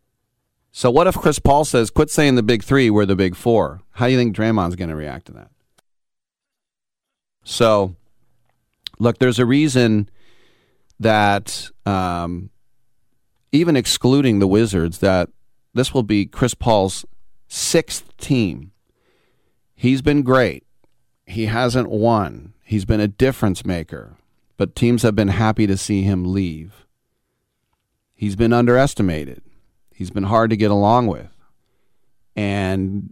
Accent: American